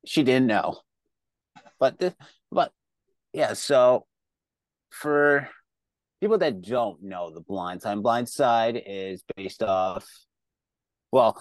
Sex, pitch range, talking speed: male, 95-115 Hz, 115 wpm